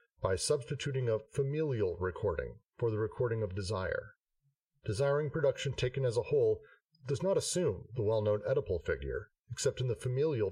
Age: 40-59